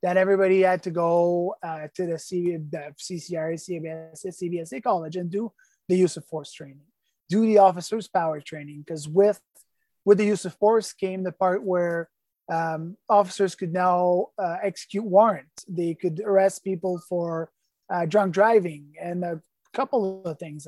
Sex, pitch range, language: male, 170-205 Hz, English